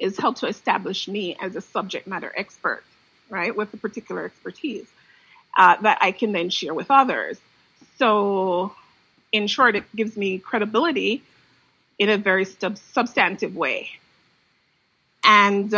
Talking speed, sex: 135 wpm, female